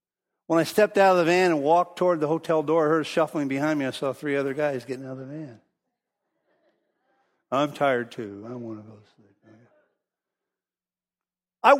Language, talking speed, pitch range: English, 190 wpm, 145-200 Hz